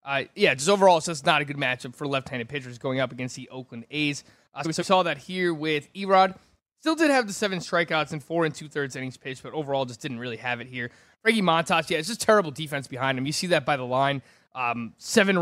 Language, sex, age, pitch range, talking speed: English, male, 20-39, 145-185 Hz, 250 wpm